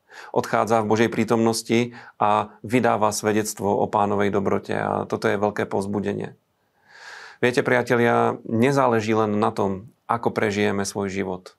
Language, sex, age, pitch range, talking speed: Slovak, male, 40-59, 105-115 Hz, 130 wpm